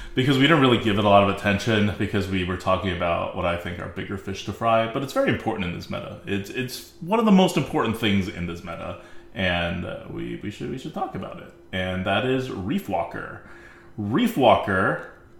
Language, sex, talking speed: English, male, 220 wpm